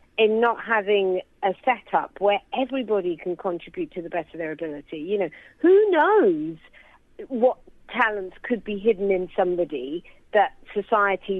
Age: 50-69